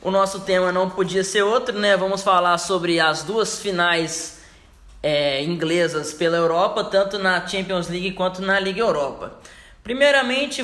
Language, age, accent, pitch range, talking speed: Portuguese, 10-29, Brazilian, 165-200 Hz, 145 wpm